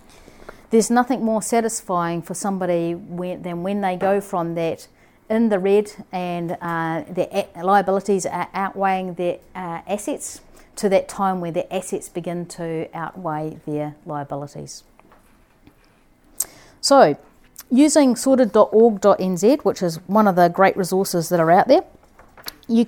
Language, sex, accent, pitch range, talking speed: English, female, Australian, 175-230 Hz, 130 wpm